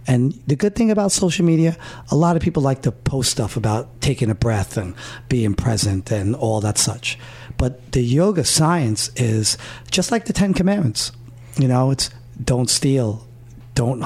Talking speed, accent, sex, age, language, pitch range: 180 wpm, American, male, 50-69, English, 115-140 Hz